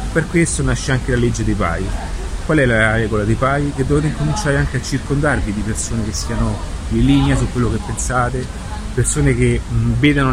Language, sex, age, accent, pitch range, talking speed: Italian, male, 30-49, native, 105-135 Hz, 190 wpm